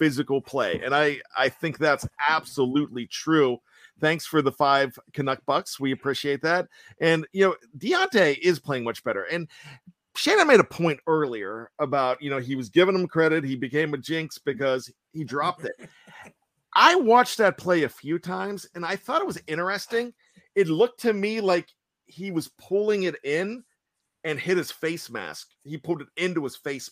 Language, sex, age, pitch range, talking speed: English, male, 40-59, 135-165 Hz, 185 wpm